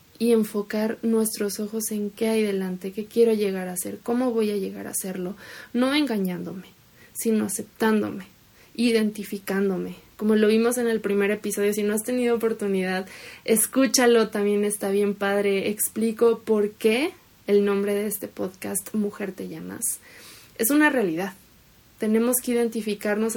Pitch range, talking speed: 205-240 Hz, 150 wpm